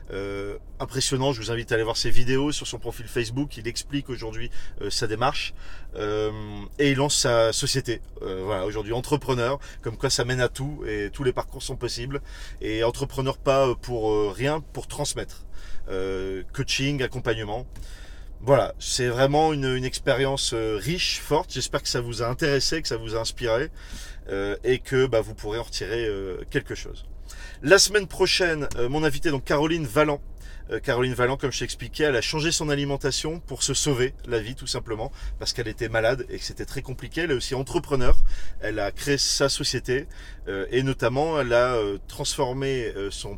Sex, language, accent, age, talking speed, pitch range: male, French, French, 30-49, 190 wpm, 105-140 Hz